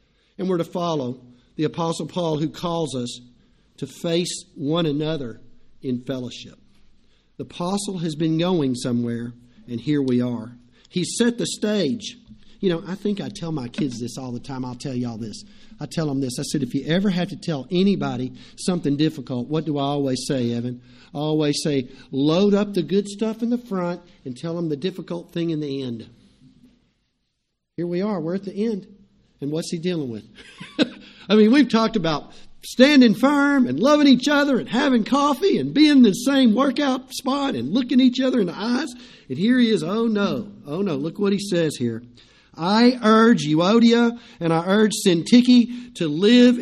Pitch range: 140-220 Hz